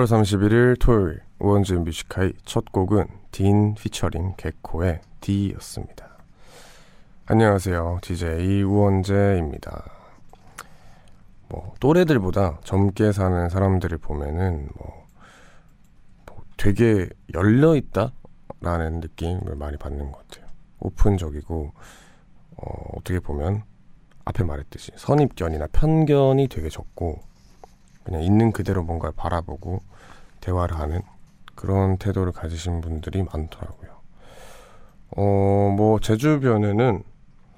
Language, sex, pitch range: Korean, male, 85-110 Hz